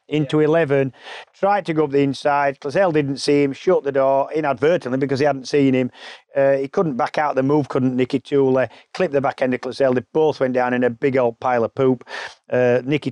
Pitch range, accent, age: 125-145 Hz, British, 40-59